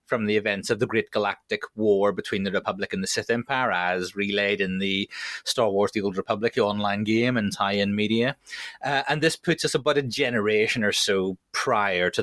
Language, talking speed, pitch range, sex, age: English, 210 wpm, 100-140 Hz, male, 30-49